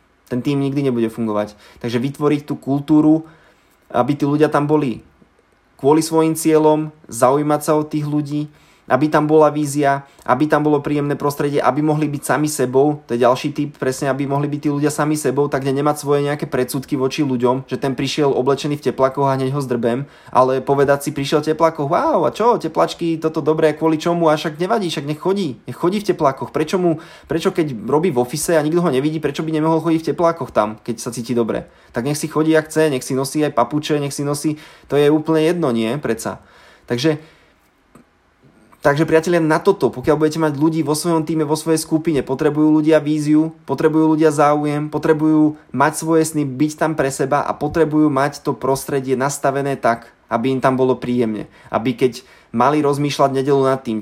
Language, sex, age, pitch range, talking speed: Slovak, male, 20-39, 125-155 Hz, 195 wpm